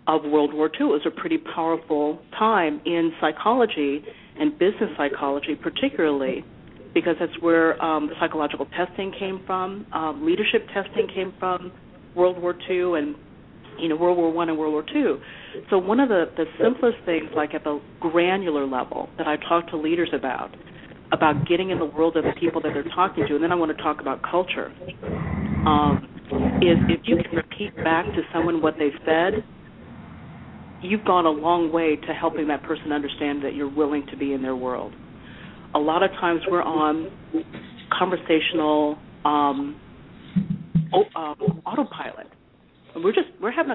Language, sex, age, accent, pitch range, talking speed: English, female, 40-59, American, 150-180 Hz, 170 wpm